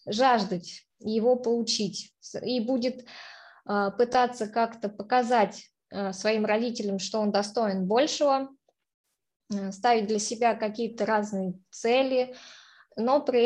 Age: 20-39